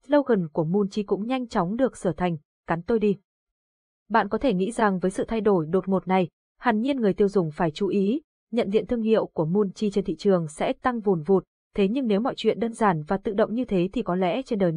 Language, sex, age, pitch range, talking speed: Vietnamese, female, 20-39, 185-235 Hz, 250 wpm